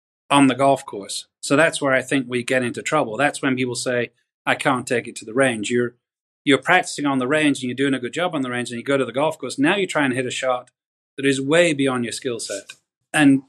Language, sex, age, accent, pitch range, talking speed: English, male, 30-49, British, 125-145 Hz, 270 wpm